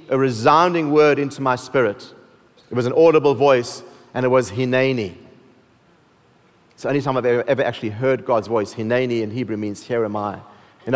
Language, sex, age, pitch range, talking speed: English, male, 40-59, 125-155 Hz, 185 wpm